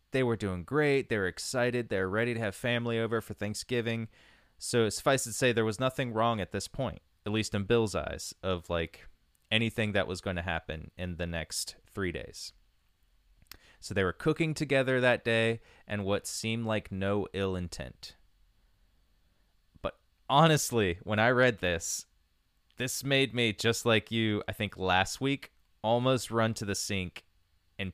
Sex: male